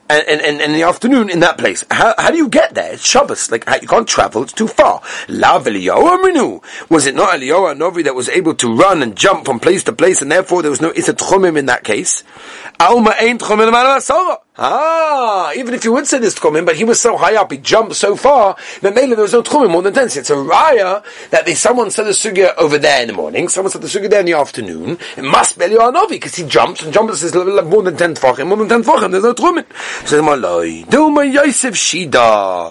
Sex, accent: male, British